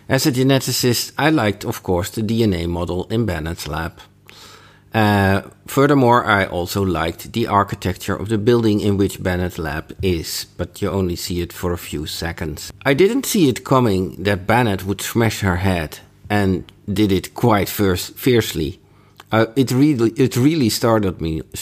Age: 50-69